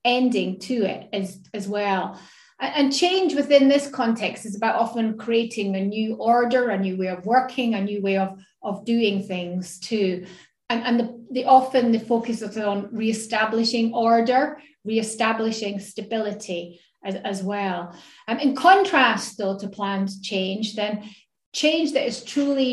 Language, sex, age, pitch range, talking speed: English, female, 30-49, 195-245 Hz, 160 wpm